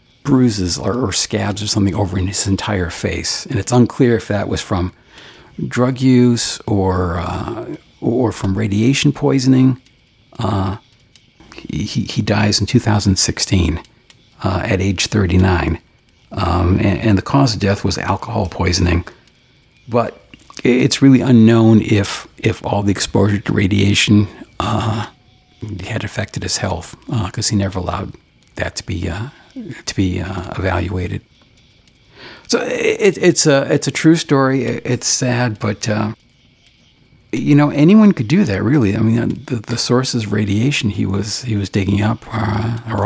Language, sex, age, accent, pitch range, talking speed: English, male, 50-69, American, 100-120 Hz, 155 wpm